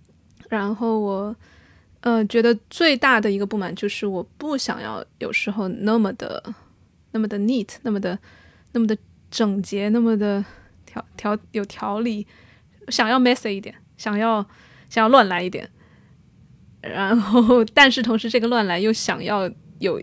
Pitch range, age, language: 195-230 Hz, 20-39, Chinese